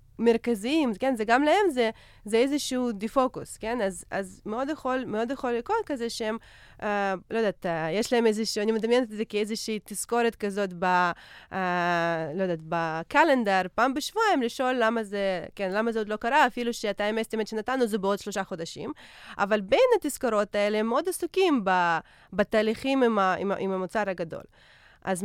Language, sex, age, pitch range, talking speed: Hebrew, female, 20-39, 195-245 Hz, 160 wpm